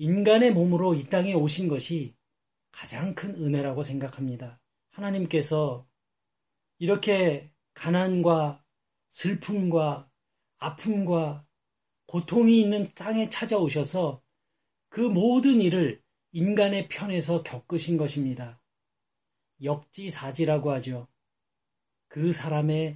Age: 40-59